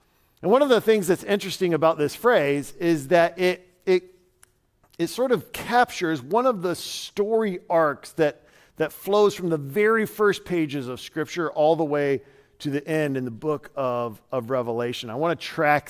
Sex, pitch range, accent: male, 135-180 Hz, American